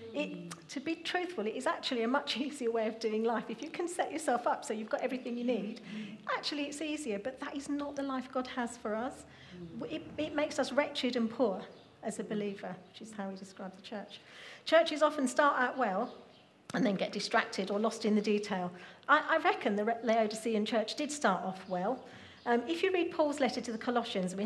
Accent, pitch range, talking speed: British, 205-255 Hz, 220 wpm